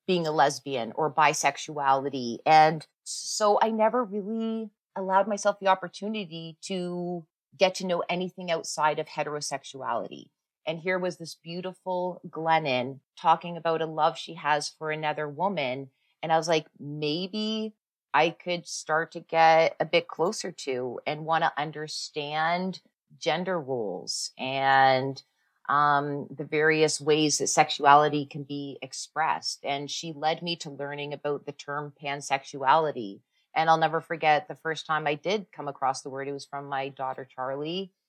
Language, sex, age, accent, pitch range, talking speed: English, female, 30-49, American, 140-175 Hz, 150 wpm